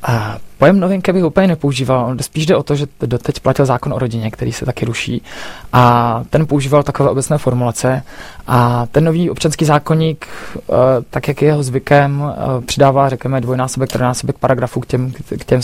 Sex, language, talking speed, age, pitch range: male, Czech, 185 wpm, 20-39, 125-140 Hz